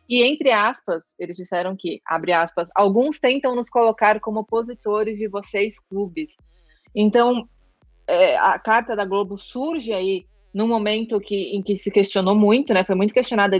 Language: Portuguese